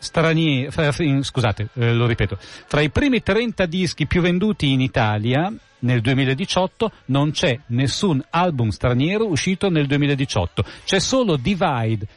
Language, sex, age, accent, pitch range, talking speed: Italian, male, 40-59, native, 125-170 Hz, 135 wpm